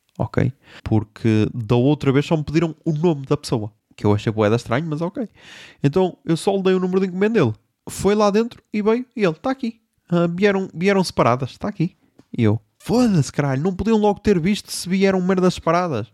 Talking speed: 210 wpm